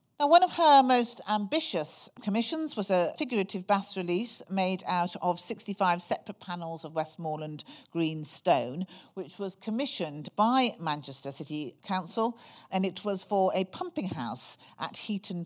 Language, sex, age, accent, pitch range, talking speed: English, female, 50-69, British, 160-205 Hz, 150 wpm